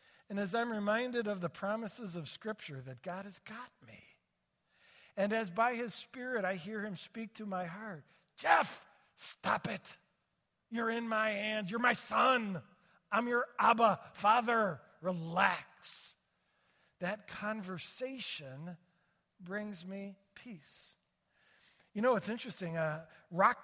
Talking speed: 130 wpm